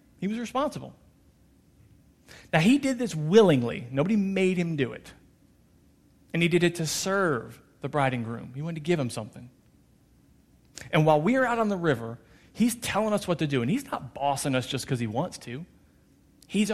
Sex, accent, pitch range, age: male, American, 120-180 Hz, 40-59